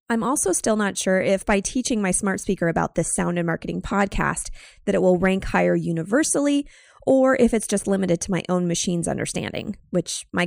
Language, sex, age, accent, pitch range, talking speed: English, female, 20-39, American, 180-240 Hz, 200 wpm